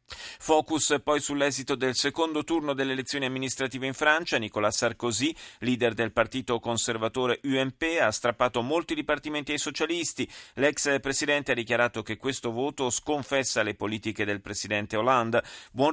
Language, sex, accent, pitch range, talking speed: Italian, male, native, 115-150 Hz, 145 wpm